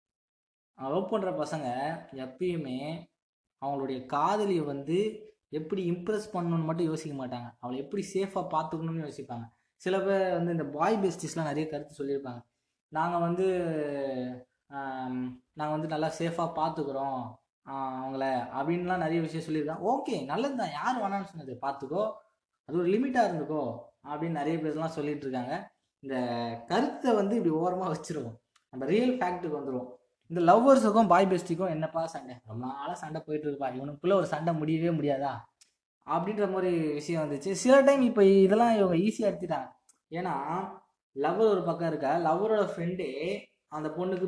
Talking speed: 135 wpm